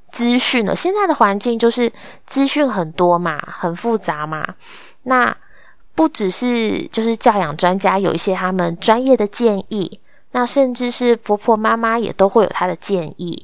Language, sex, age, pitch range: Chinese, female, 20-39, 185-275 Hz